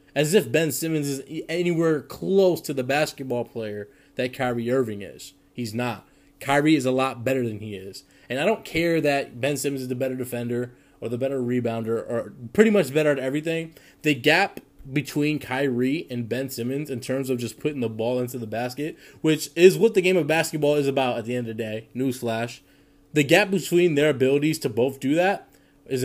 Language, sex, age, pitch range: English, male, 20-39, 125-150 Hz